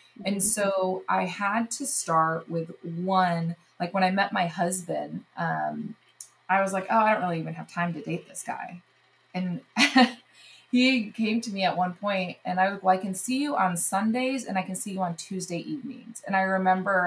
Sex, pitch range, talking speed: female, 160-195 Hz, 205 wpm